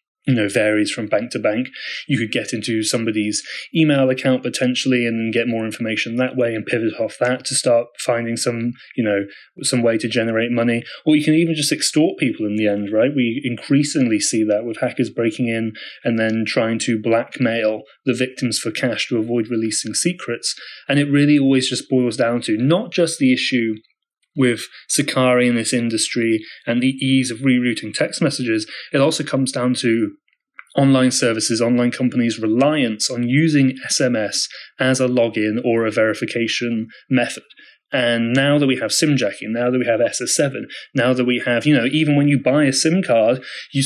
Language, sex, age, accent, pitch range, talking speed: English, male, 30-49, British, 115-140 Hz, 190 wpm